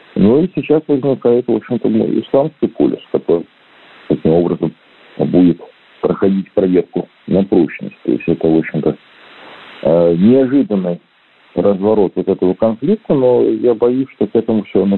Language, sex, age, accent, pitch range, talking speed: Russian, male, 40-59, native, 90-120 Hz, 135 wpm